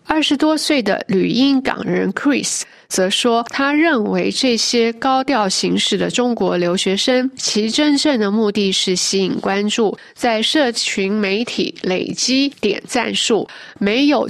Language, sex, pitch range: Chinese, female, 195-265 Hz